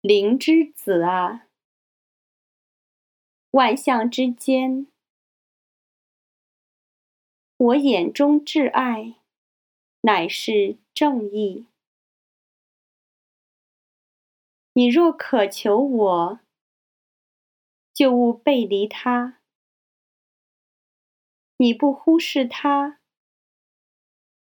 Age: 30-49